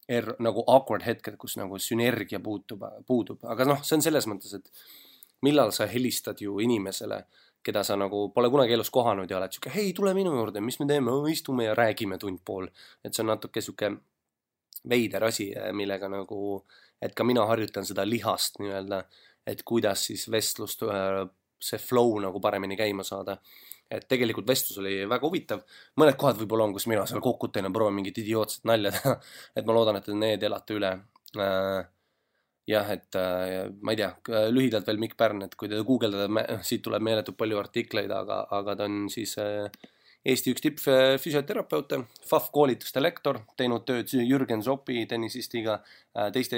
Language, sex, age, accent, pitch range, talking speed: English, male, 20-39, Finnish, 100-120 Hz, 160 wpm